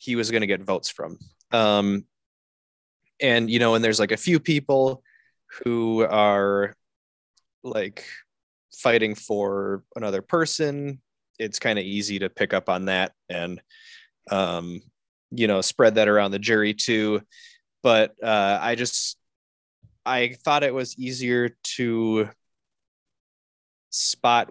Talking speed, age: 130 wpm, 20-39